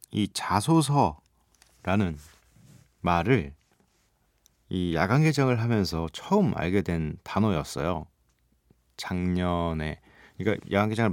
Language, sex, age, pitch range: Korean, male, 40-59, 85-125 Hz